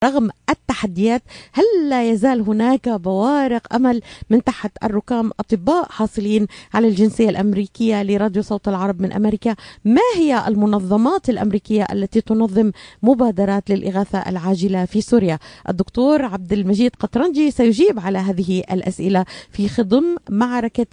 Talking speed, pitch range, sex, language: 125 wpm, 195-235 Hz, female, Arabic